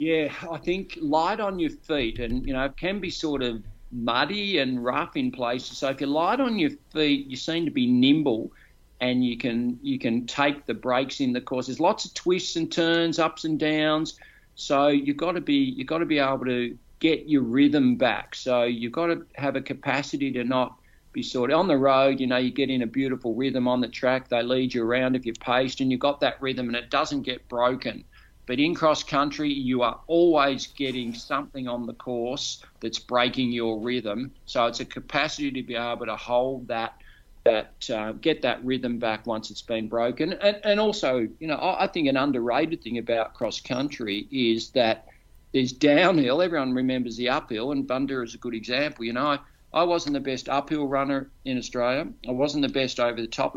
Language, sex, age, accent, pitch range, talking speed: English, male, 50-69, Australian, 125-155 Hz, 215 wpm